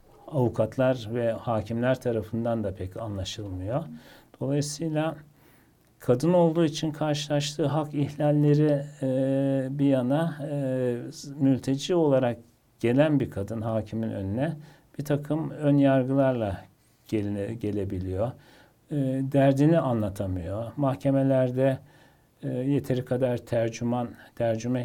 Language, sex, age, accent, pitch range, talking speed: Turkish, male, 60-79, native, 115-145 Hz, 95 wpm